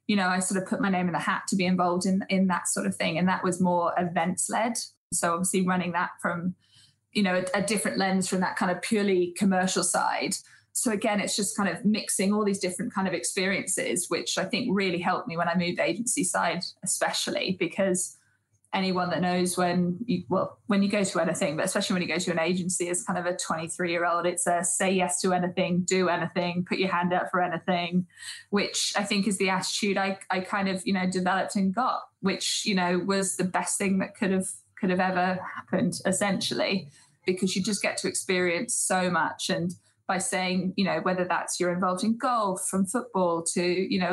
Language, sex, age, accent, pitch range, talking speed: English, female, 20-39, British, 180-195 Hz, 220 wpm